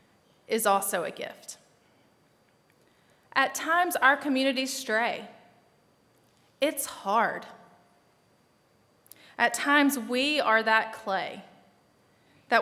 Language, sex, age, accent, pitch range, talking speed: English, female, 30-49, American, 210-255 Hz, 85 wpm